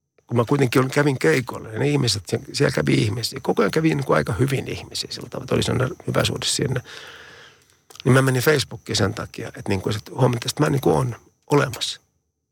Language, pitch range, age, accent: Finnish, 115-140 Hz, 50-69, native